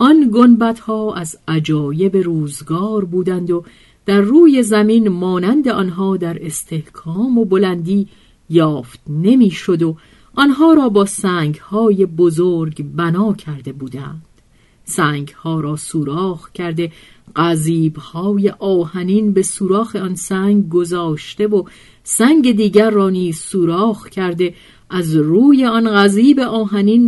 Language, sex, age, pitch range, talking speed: Persian, female, 40-59, 160-210 Hz, 115 wpm